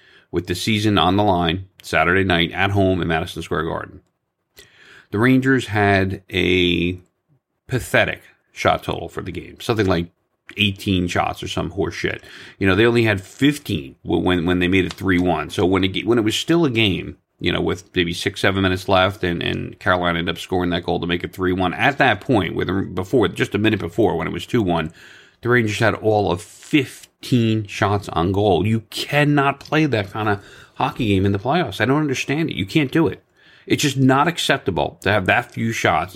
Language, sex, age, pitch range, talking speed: English, male, 40-59, 90-115 Hz, 200 wpm